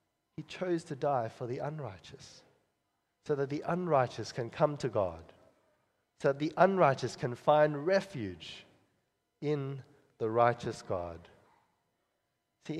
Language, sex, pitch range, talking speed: English, male, 135-190 Hz, 125 wpm